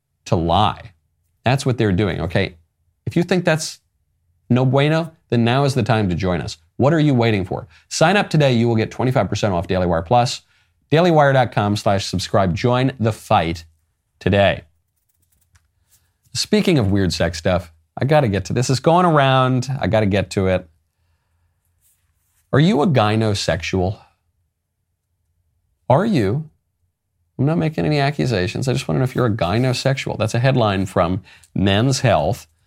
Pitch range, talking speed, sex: 90-125 Hz, 165 wpm, male